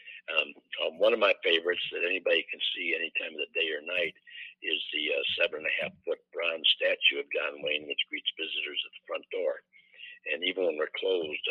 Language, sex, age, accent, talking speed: English, male, 60-79, American, 200 wpm